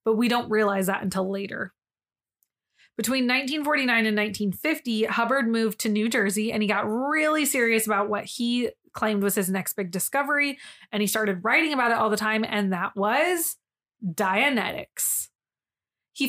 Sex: female